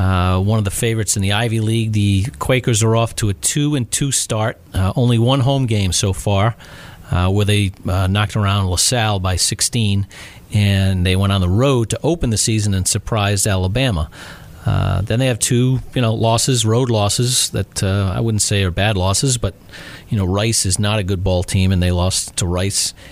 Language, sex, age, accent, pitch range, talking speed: English, male, 40-59, American, 90-110 Hz, 215 wpm